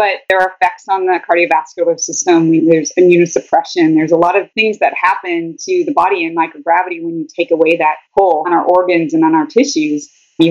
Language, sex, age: English, female, 30-49